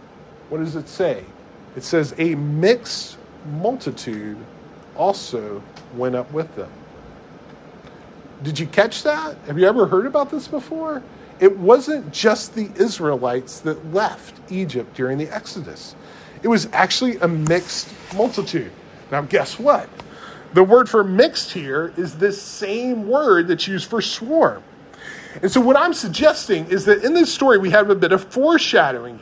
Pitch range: 165-235 Hz